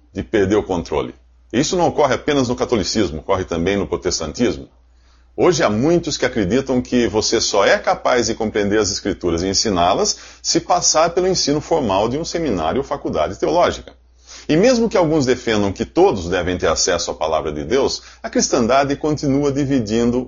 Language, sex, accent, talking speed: Portuguese, male, Brazilian, 175 wpm